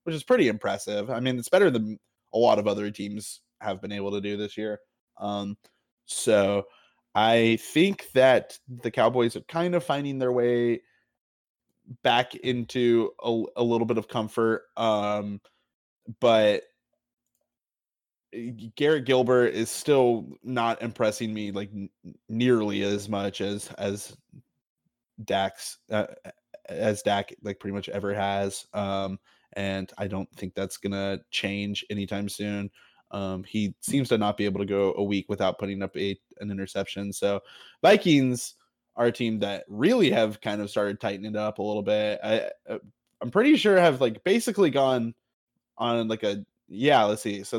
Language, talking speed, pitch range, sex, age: English, 160 wpm, 100-120 Hz, male, 20-39